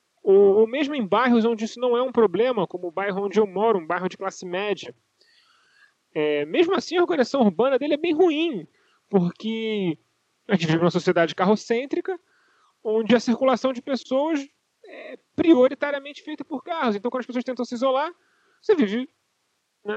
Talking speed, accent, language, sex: 175 wpm, Brazilian, Portuguese, male